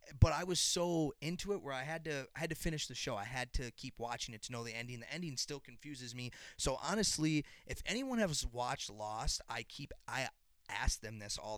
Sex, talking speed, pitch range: male, 235 wpm, 115-140 Hz